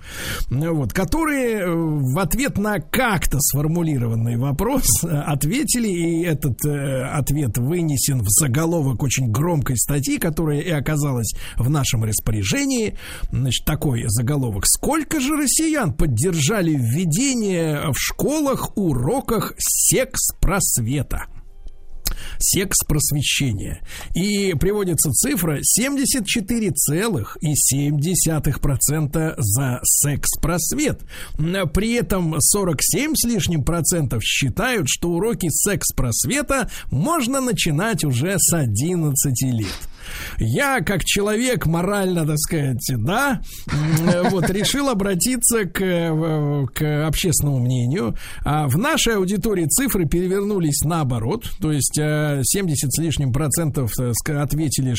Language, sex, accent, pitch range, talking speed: Russian, male, native, 135-190 Hz, 95 wpm